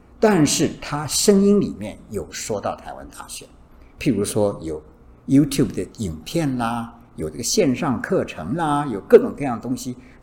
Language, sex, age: Chinese, male, 50-69